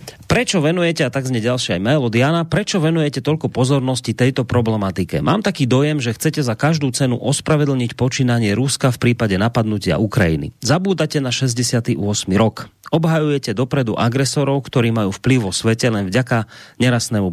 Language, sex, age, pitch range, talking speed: Slovak, male, 40-59, 110-145 Hz, 150 wpm